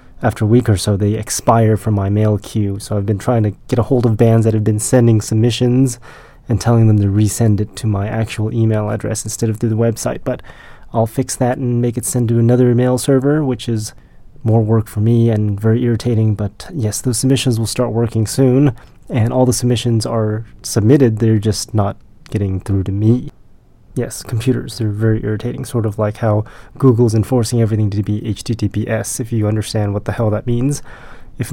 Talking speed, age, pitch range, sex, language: 205 wpm, 20-39, 105-120 Hz, male, English